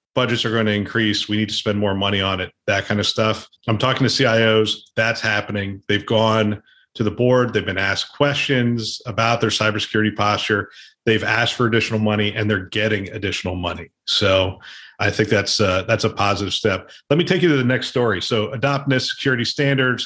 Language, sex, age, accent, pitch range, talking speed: English, male, 40-59, American, 105-125 Hz, 195 wpm